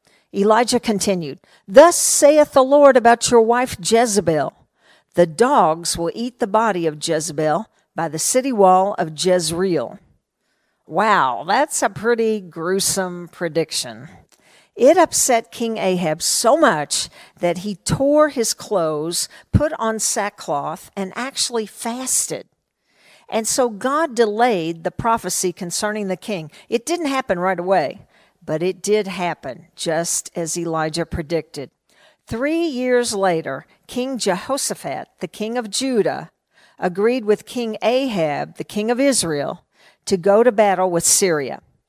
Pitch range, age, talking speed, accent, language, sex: 175-235 Hz, 50-69, 130 wpm, American, English, female